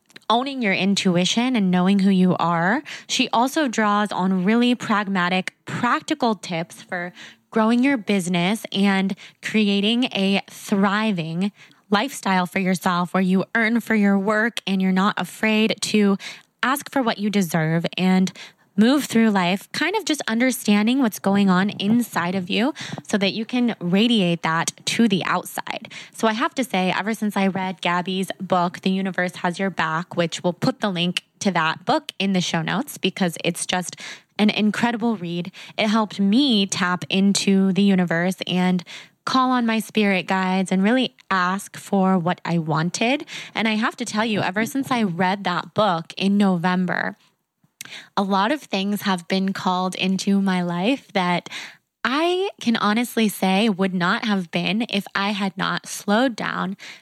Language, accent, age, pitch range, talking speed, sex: English, American, 20-39, 180-220 Hz, 165 wpm, female